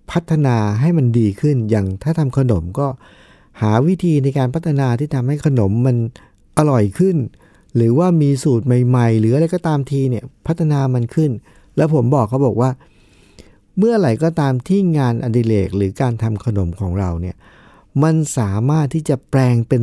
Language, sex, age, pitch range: Thai, male, 60-79, 100-135 Hz